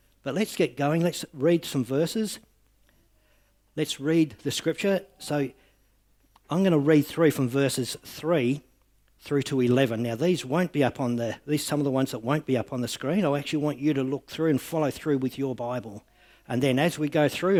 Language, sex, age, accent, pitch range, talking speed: English, male, 50-69, Australian, 110-145 Hz, 215 wpm